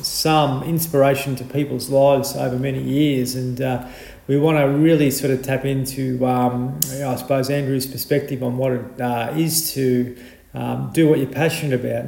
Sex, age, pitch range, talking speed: male, 40-59, 125-140 Hz, 175 wpm